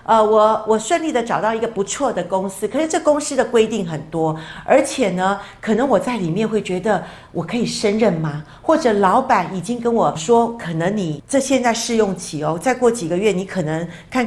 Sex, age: female, 50-69